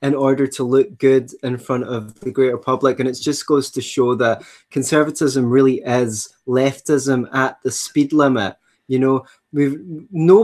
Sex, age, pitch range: male, 20-39, 125-140 Hz